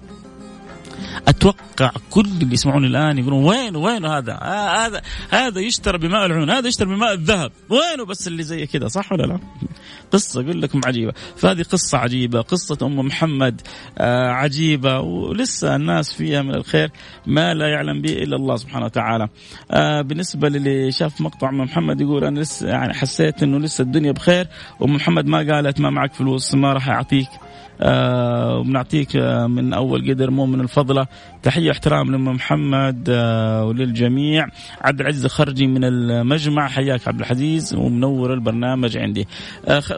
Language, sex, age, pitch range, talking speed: Arabic, male, 30-49, 120-155 Hz, 160 wpm